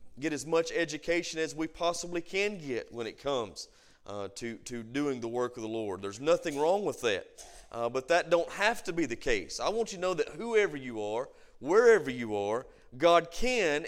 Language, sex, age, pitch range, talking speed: English, male, 40-59, 135-200 Hz, 210 wpm